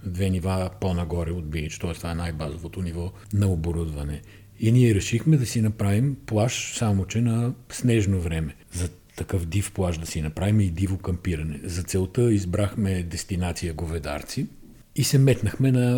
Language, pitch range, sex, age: Bulgarian, 85-110 Hz, male, 50-69